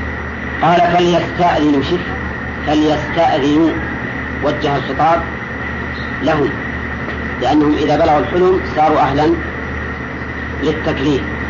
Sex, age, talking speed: female, 40-59, 75 wpm